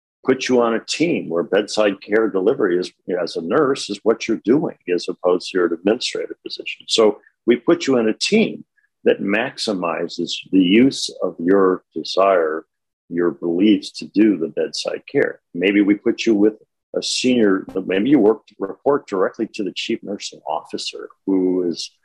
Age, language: 50-69, English